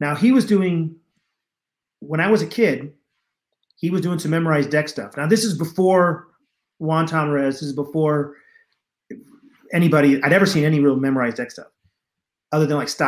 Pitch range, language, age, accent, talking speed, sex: 145-195 Hz, English, 40-59, American, 175 wpm, male